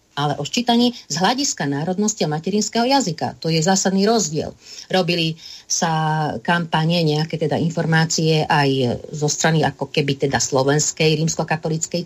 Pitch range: 150-190 Hz